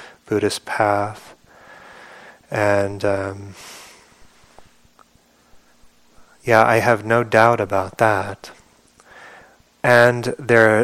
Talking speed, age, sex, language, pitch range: 70 wpm, 30-49, male, English, 100-115 Hz